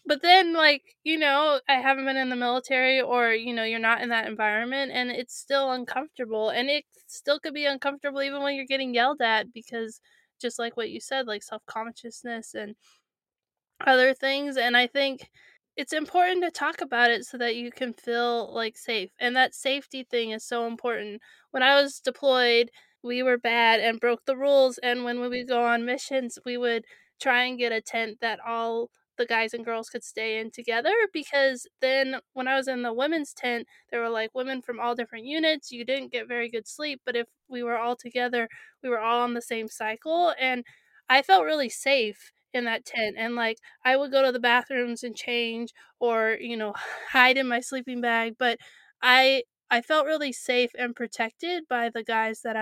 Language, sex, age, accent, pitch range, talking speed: English, female, 20-39, American, 230-270 Hz, 200 wpm